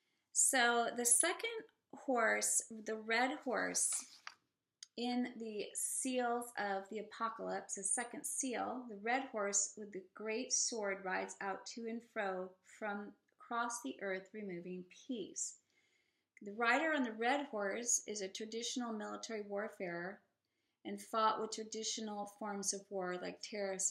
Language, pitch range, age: English, 190-240 Hz, 30-49